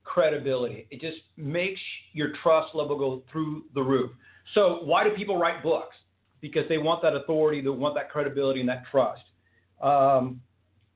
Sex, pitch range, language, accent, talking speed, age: male, 100-155 Hz, English, American, 160 wpm, 50-69